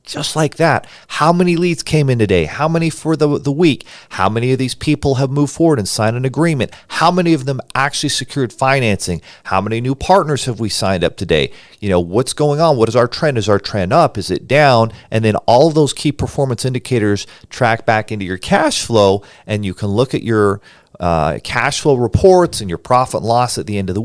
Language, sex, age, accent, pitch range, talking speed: English, male, 40-59, American, 105-140 Hz, 230 wpm